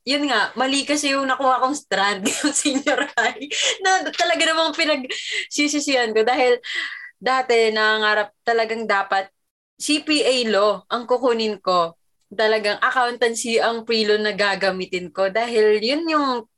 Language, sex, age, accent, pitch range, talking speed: Filipino, female, 20-39, native, 220-290 Hz, 130 wpm